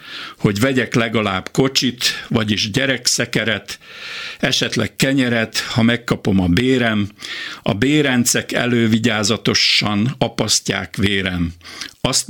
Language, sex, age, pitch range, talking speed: Hungarian, male, 60-79, 105-125 Hz, 90 wpm